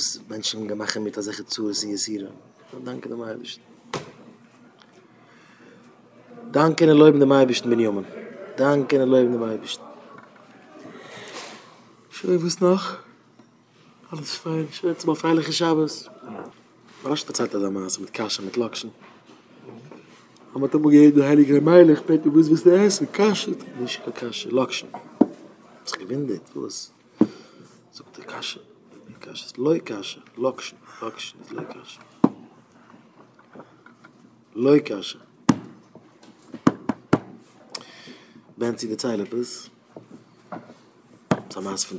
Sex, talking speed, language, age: male, 80 wpm, English, 30-49